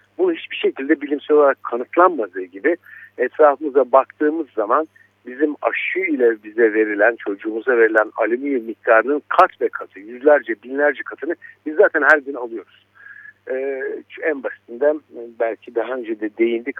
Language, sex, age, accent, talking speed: Turkish, male, 60-79, native, 135 wpm